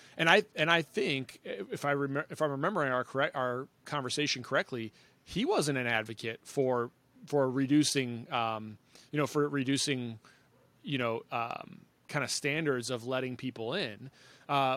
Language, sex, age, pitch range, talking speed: English, male, 30-49, 125-150 Hz, 160 wpm